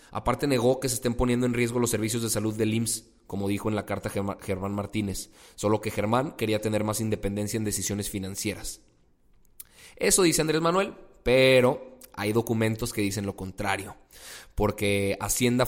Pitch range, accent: 100-125 Hz, Mexican